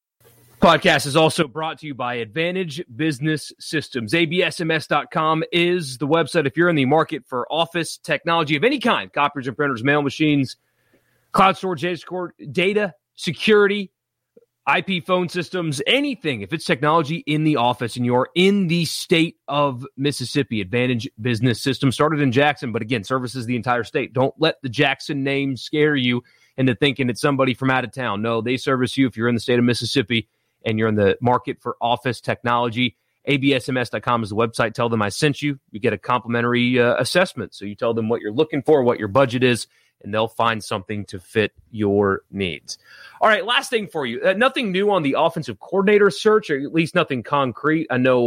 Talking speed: 190 wpm